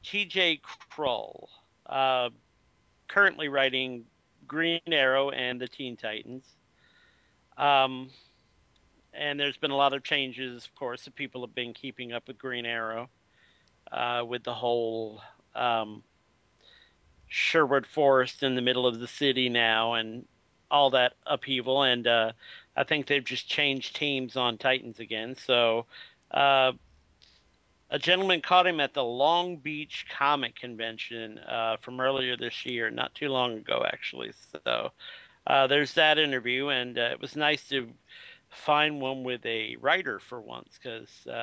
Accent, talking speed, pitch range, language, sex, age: American, 145 wpm, 120-145 Hz, English, male, 50-69